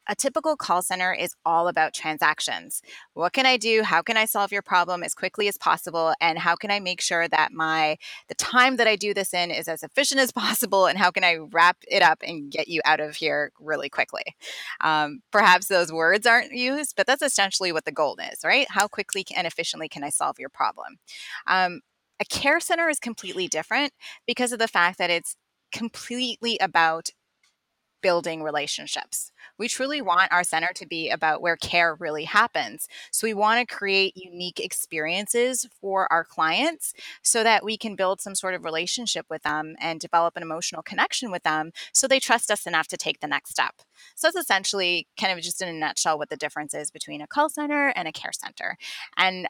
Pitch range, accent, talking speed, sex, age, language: 165-225 Hz, American, 205 wpm, female, 20-39, English